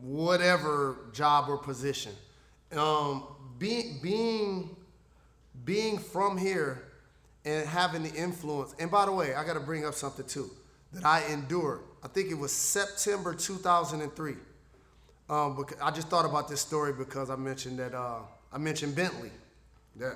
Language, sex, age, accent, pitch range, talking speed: English, male, 30-49, American, 140-175 Hz, 150 wpm